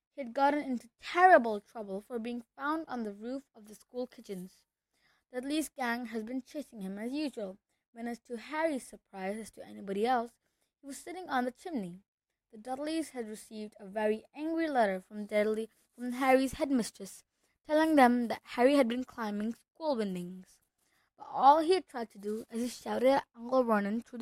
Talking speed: 185 wpm